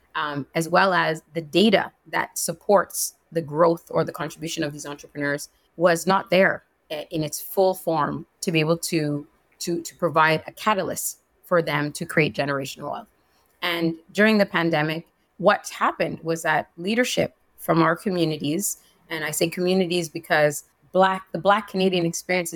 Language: English